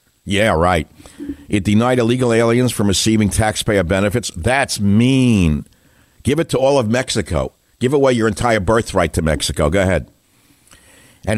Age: 60-79